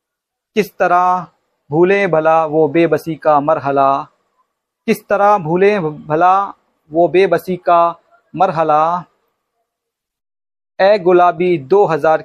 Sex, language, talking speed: male, Hindi, 100 wpm